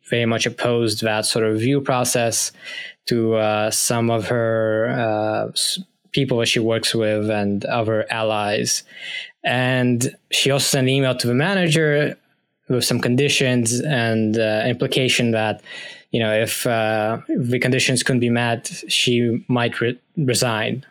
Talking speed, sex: 145 wpm, male